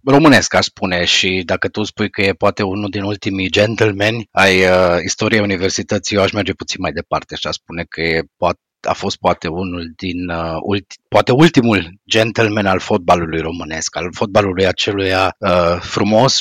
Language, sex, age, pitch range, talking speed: Romanian, male, 30-49, 90-110 Hz, 170 wpm